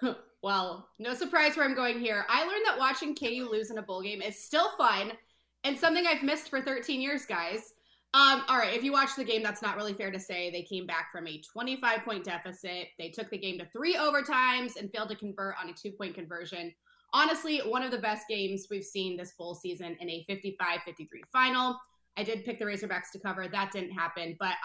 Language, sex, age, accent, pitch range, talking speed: English, female, 20-39, American, 185-255 Hz, 220 wpm